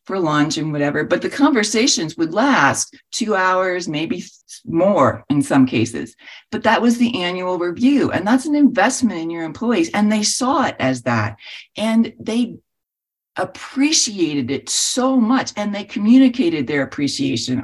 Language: English